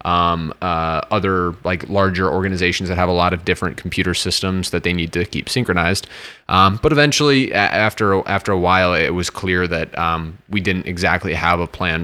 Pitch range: 90-100 Hz